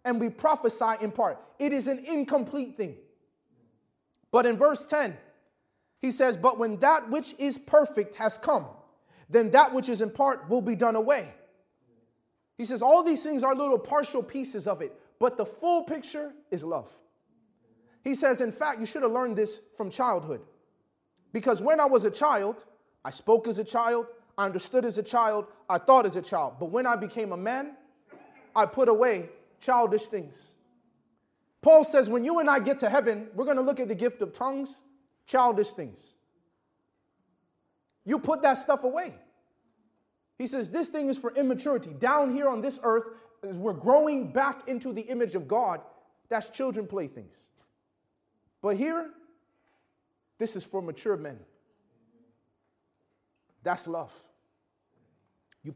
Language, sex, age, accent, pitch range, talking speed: English, male, 30-49, American, 220-280 Hz, 165 wpm